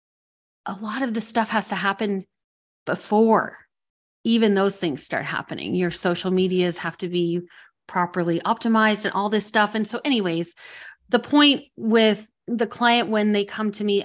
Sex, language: female, English